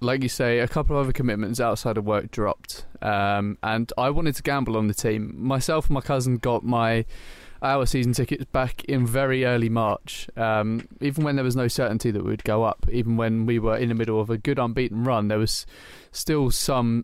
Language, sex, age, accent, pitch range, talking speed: English, male, 20-39, British, 110-125 Hz, 220 wpm